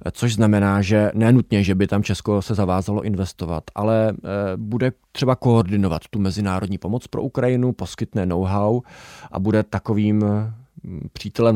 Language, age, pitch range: Czech, 20-39, 95-110 Hz